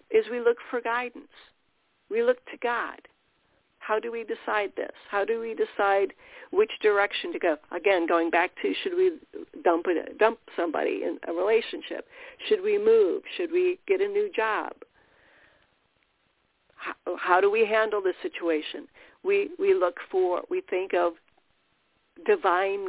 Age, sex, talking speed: 50-69, female, 155 wpm